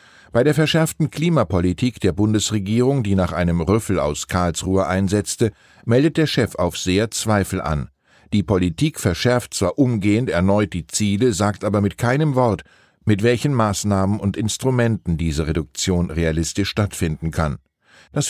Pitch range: 90-120 Hz